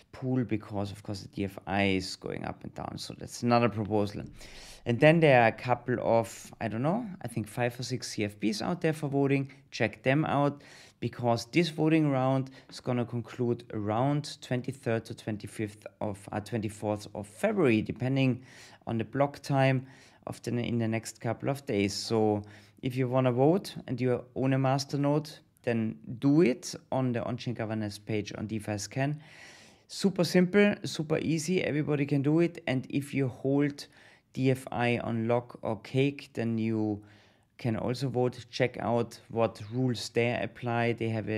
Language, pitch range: English, 110-135 Hz